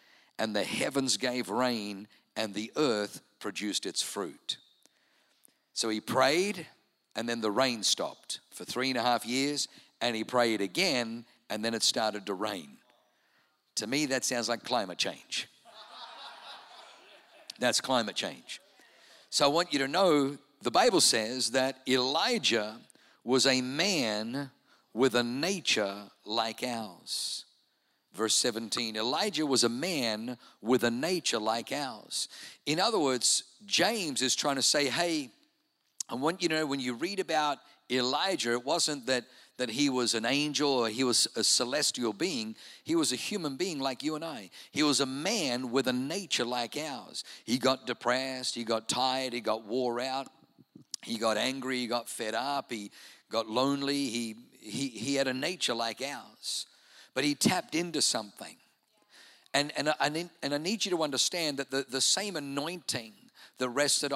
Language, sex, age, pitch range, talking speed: English, male, 50-69, 115-145 Hz, 165 wpm